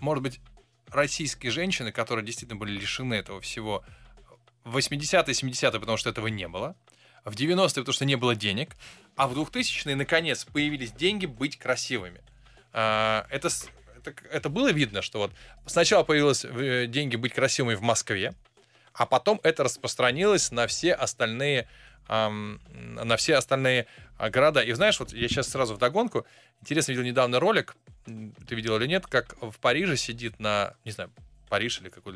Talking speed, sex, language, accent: 155 wpm, male, Russian, native